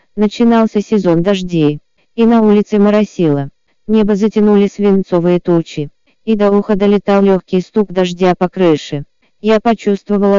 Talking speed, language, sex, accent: 125 wpm, Russian, female, native